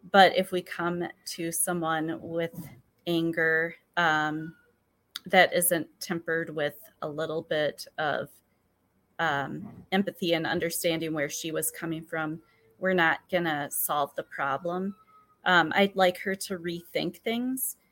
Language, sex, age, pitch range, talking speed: English, female, 30-49, 165-190 Hz, 135 wpm